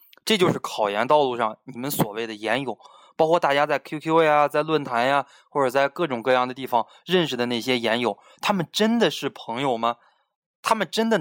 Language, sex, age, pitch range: Chinese, male, 20-39, 120-170 Hz